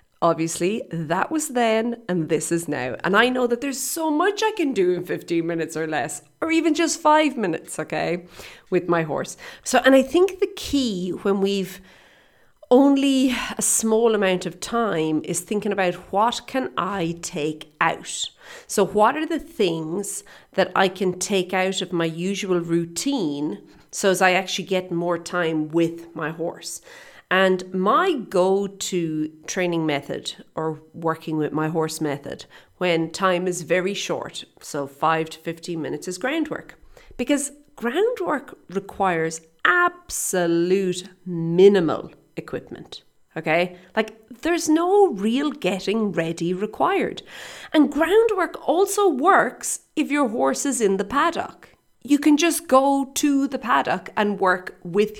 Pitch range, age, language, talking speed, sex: 170-270 Hz, 40-59, English, 150 wpm, female